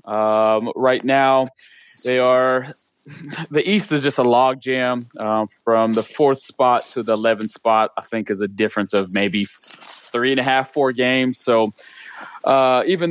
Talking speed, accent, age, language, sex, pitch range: 170 wpm, American, 20-39, English, male, 110-135 Hz